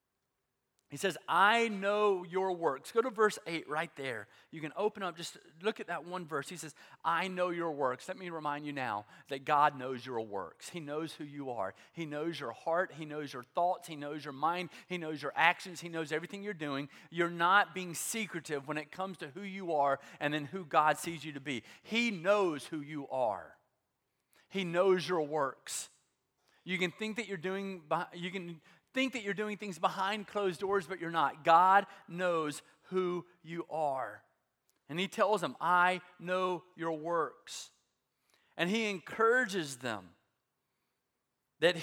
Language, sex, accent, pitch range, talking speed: English, male, American, 155-195 Hz, 185 wpm